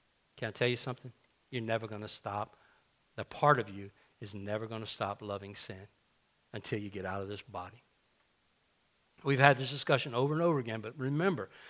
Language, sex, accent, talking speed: English, male, American, 195 wpm